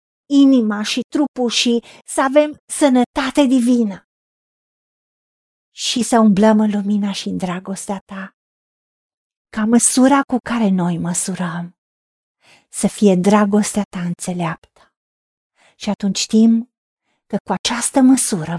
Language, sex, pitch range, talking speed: Romanian, female, 185-250 Hz, 115 wpm